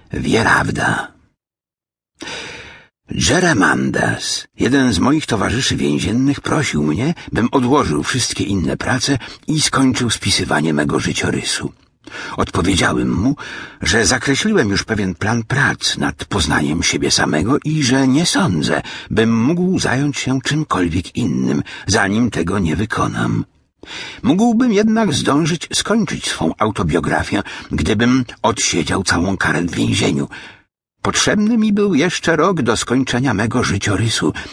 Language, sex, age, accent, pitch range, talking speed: Polish, male, 60-79, native, 100-155 Hz, 115 wpm